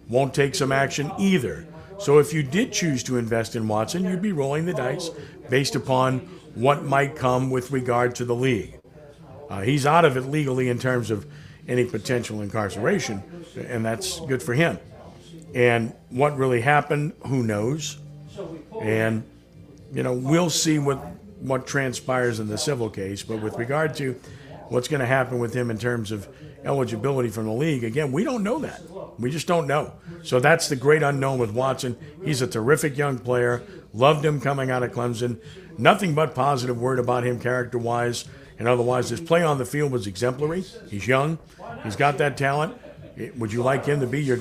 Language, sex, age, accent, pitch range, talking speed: English, male, 50-69, American, 120-150 Hz, 185 wpm